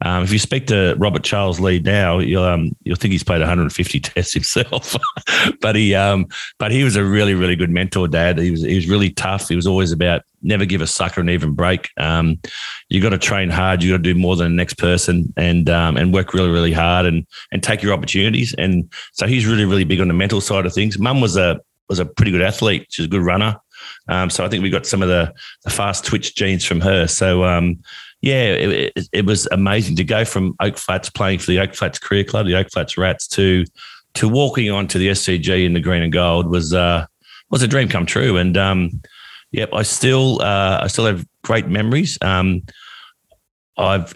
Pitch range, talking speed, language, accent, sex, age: 85-100 Hz, 230 wpm, English, Australian, male, 30-49